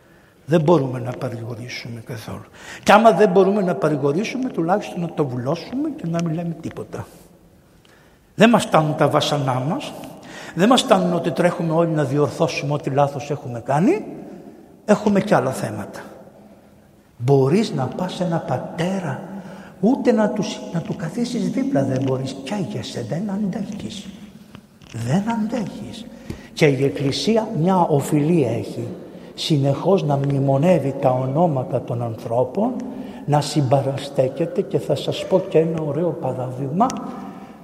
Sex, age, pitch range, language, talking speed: male, 60-79, 145-195 Hz, Greek, 135 wpm